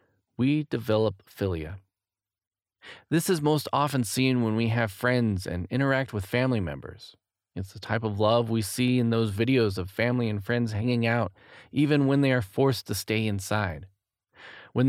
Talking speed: 170 wpm